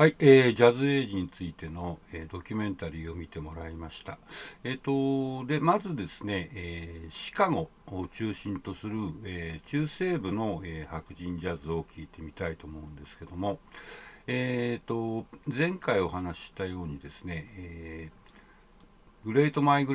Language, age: Japanese, 60-79